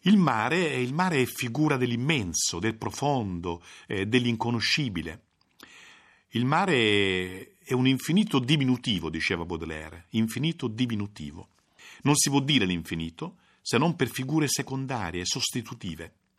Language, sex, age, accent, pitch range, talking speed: Italian, male, 50-69, native, 105-155 Hz, 115 wpm